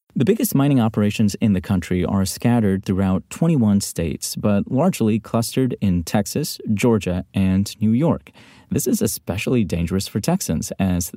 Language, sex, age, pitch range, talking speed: English, male, 30-49, 90-115 Hz, 150 wpm